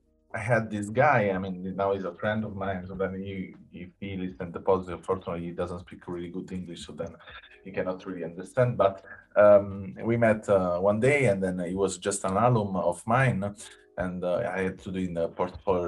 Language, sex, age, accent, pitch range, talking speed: English, male, 30-49, Italian, 95-120 Hz, 225 wpm